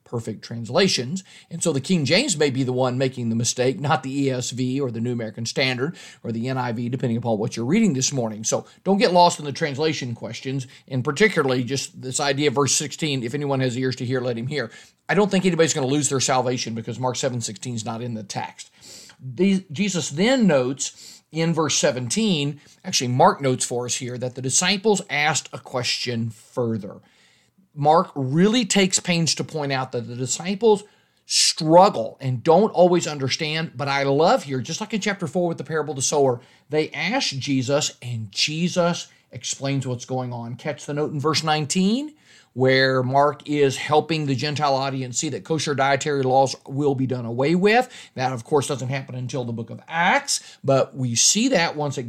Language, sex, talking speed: English, male, 200 wpm